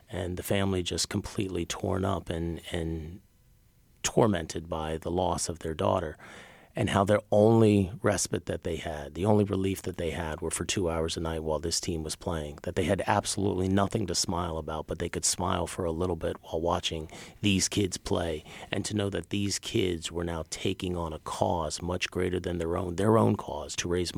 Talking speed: 210 wpm